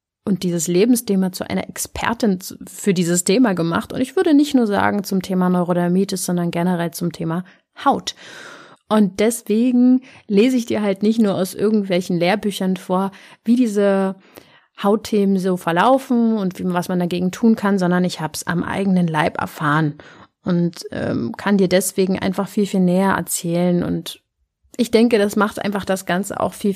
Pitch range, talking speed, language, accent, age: 180-220 Hz, 170 wpm, German, German, 30-49